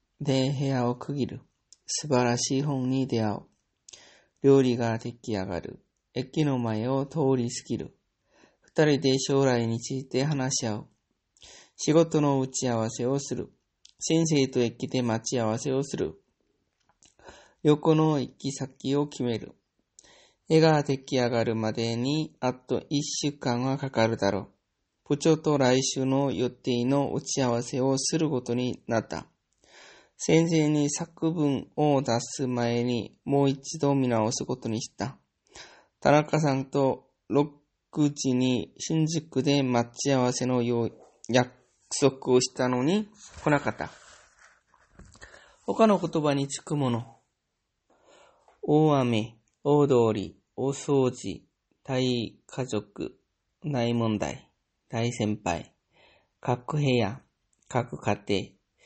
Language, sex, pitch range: English, male, 120-145 Hz